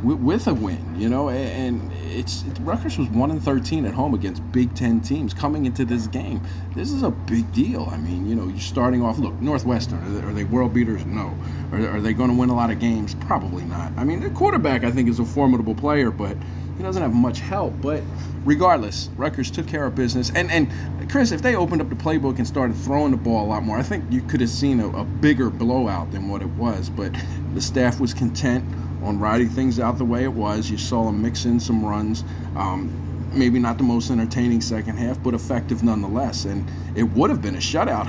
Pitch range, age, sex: 90-120 Hz, 40-59, male